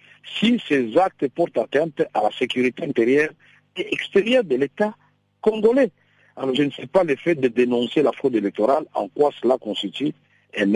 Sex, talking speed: male, 175 wpm